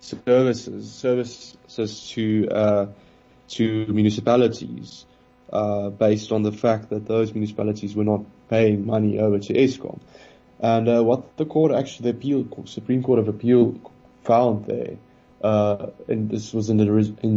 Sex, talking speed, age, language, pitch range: male, 140 wpm, 20-39, English, 105-125 Hz